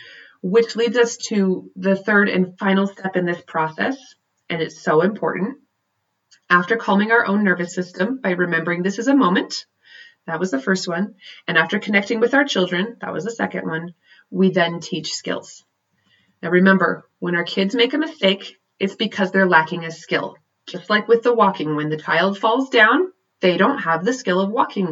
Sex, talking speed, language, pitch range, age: female, 190 wpm, English, 170-210 Hz, 30-49